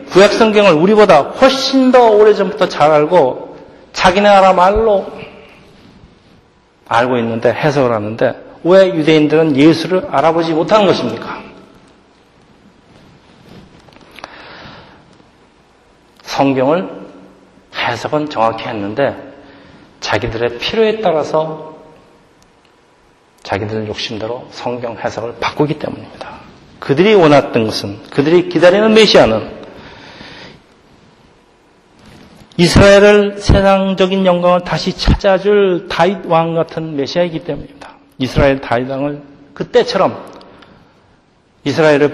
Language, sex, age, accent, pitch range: Korean, male, 40-59, native, 130-185 Hz